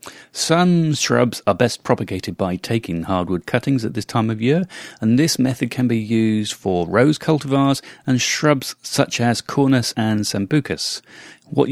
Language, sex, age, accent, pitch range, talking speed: English, male, 40-59, British, 100-140 Hz, 160 wpm